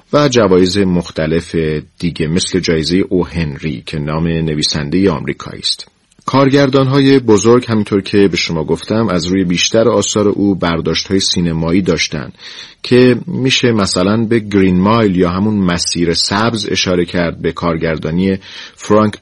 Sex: male